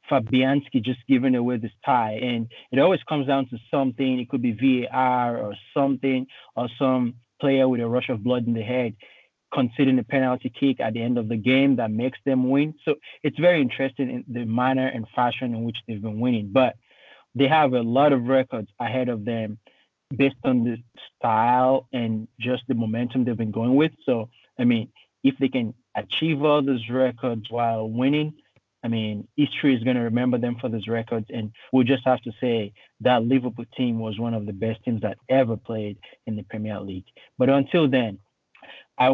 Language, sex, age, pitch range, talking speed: English, male, 30-49, 115-135 Hz, 200 wpm